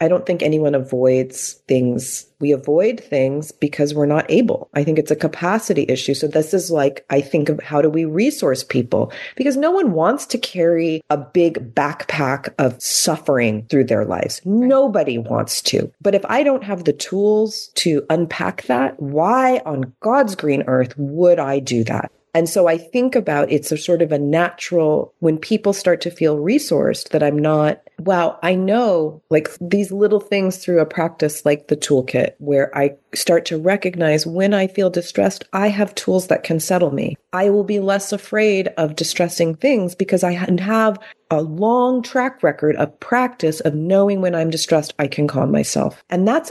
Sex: female